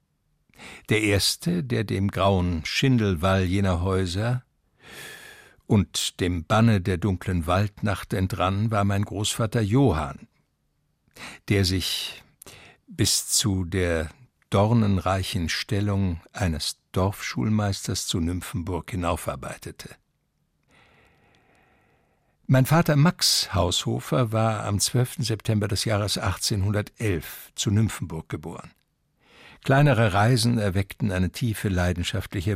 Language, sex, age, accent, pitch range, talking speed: German, male, 60-79, German, 95-120 Hz, 95 wpm